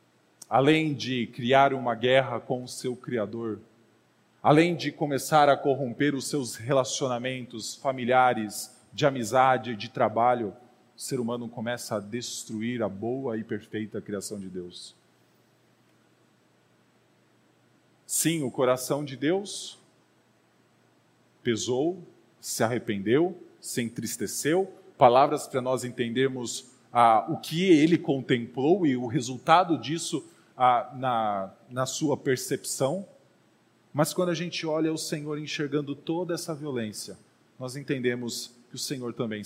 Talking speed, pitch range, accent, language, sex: 120 wpm, 115-145 Hz, Brazilian, Portuguese, male